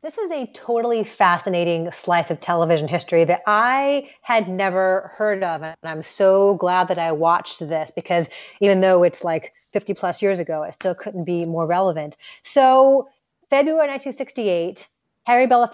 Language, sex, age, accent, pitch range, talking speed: English, female, 30-49, American, 175-230 Hz, 155 wpm